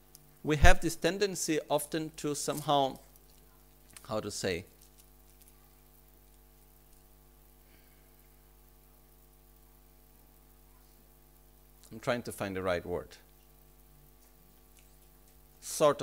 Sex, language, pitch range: male, Italian, 85-120 Hz